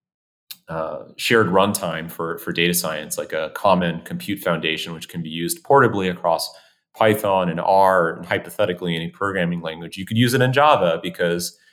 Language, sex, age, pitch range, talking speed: English, male, 30-49, 85-95 Hz, 170 wpm